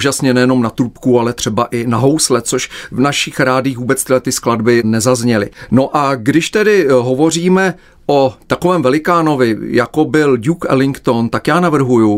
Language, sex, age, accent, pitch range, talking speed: Czech, male, 40-59, native, 130-160 Hz, 160 wpm